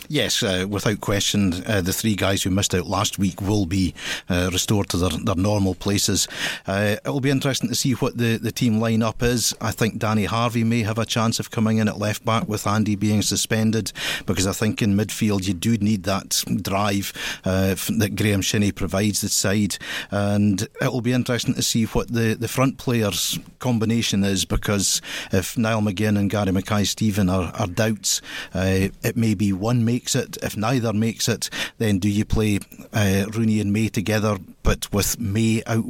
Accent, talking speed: British, 200 wpm